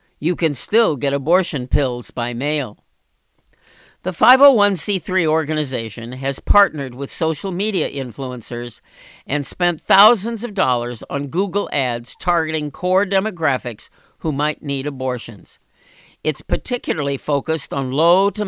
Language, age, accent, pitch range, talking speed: English, 50-69, American, 135-185 Hz, 125 wpm